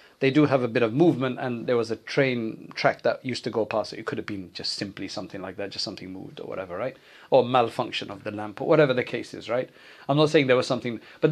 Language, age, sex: English, 40-59, male